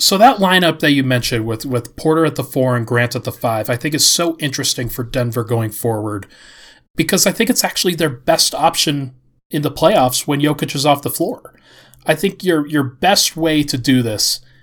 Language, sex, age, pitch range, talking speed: English, male, 30-49, 125-155 Hz, 215 wpm